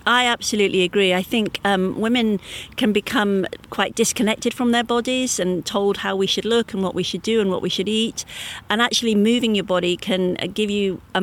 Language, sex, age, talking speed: English, female, 40-59, 210 wpm